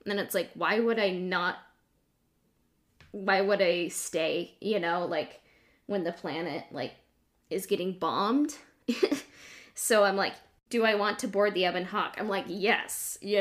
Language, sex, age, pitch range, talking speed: English, female, 10-29, 185-225 Hz, 165 wpm